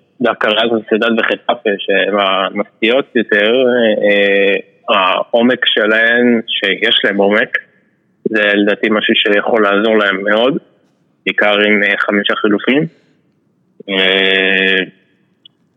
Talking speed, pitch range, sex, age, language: 95 wpm, 100-125 Hz, male, 20-39, Hebrew